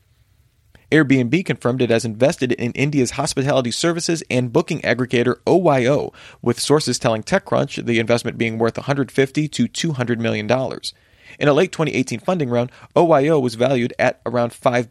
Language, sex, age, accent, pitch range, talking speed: English, male, 30-49, American, 120-150 Hz, 150 wpm